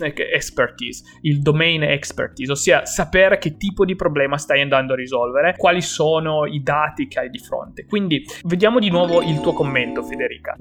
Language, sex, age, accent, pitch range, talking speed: Italian, male, 20-39, native, 140-180 Hz, 170 wpm